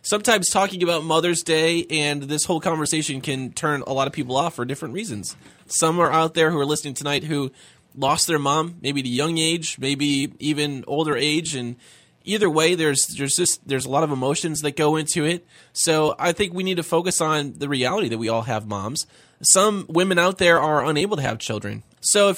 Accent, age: American, 20-39